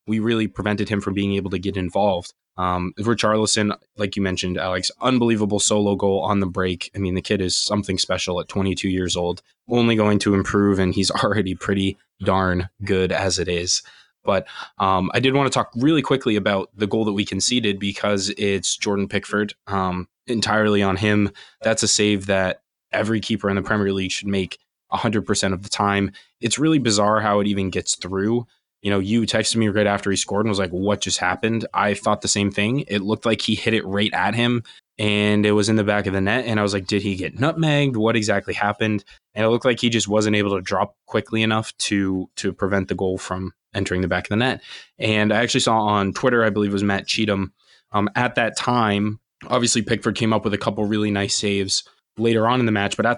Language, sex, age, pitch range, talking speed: English, male, 20-39, 95-110 Hz, 225 wpm